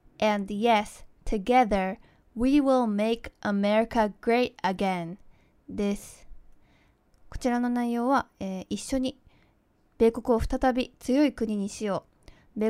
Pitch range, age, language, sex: 205-250 Hz, 20-39, Japanese, female